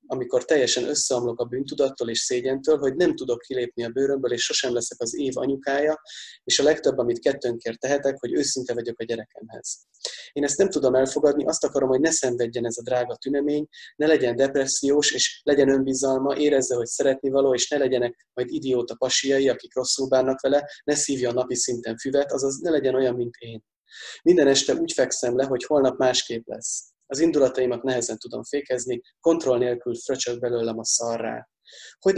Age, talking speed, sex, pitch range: 20-39, 180 wpm, male, 120-140 Hz